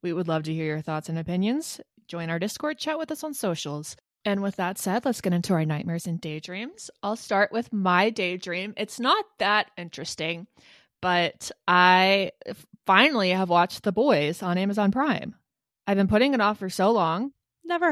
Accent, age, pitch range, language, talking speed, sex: American, 20-39, 170-215 Hz, English, 190 wpm, female